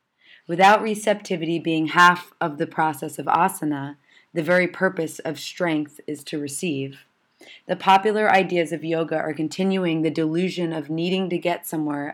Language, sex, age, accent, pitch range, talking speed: English, female, 30-49, American, 155-180 Hz, 155 wpm